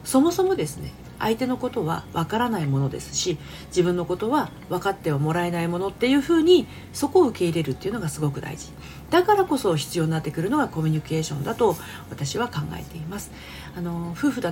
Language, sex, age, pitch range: Japanese, female, 40-59, 155-240 Hz